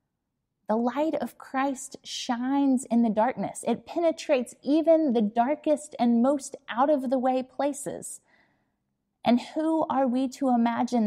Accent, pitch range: American, 210-270 Hz